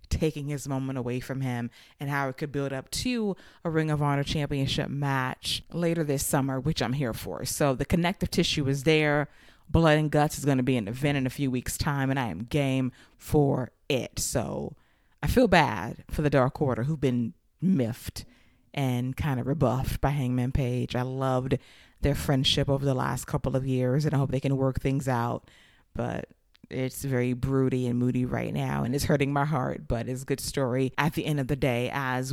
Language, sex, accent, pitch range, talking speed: English, female, American, 130-165 Hz, 210 wpm